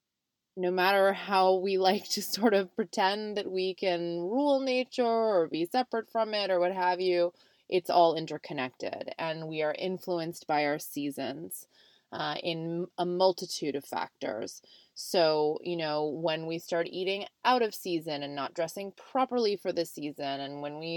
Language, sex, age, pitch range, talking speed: English, female, 20-39, 160-185 Hz, 170 wpm